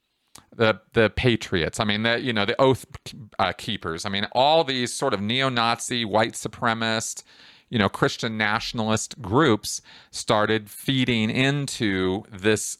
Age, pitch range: 40-59, 105-130 Hz